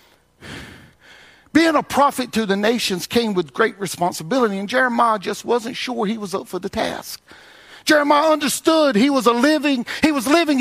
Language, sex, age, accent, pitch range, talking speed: English, male, 50-69, American, 150-250 Hz, 170 wpm